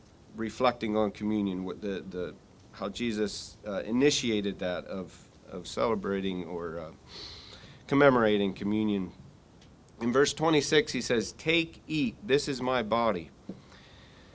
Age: 40-59